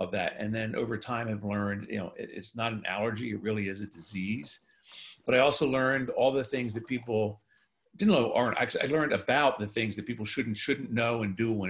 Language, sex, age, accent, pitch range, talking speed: English, male, 50-69, American, 105-125 Hz, 240 wpm